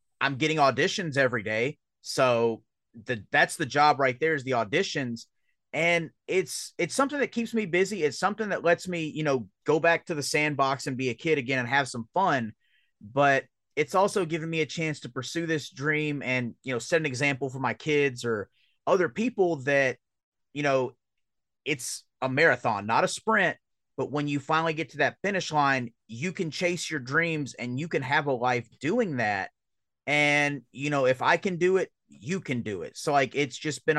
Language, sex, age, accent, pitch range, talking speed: English, male, 30-49, American, 130-165 Hz, 205 wpm